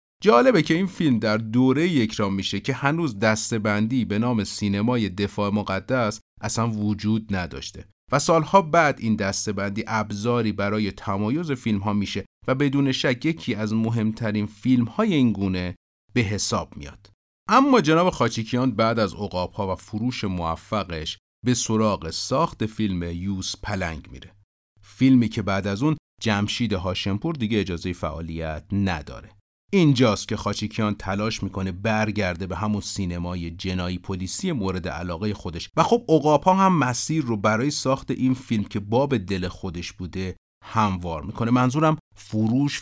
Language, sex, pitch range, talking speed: Persian, male, 95-125 Hz, 145 wpm